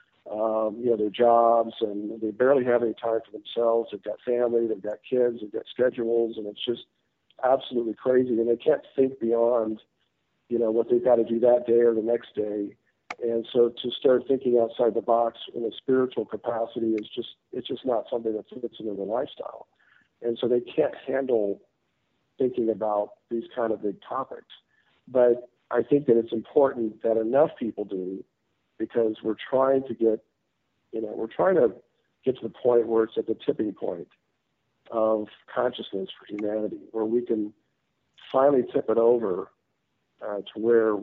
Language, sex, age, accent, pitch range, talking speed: English, male, 50-69, American, 110-120 Hz, 180 wpm